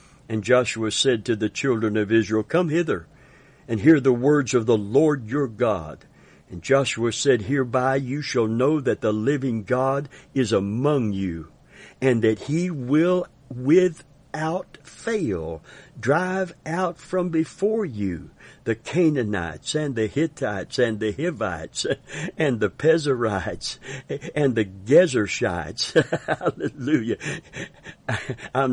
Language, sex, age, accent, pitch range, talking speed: English, male, 60-79, American, 110-145 Hz, 125 wpm